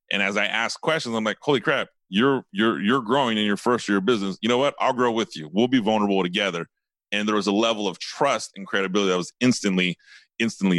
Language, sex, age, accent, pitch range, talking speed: English, male, 30-49, American, 95-130 Hz, 235 wpm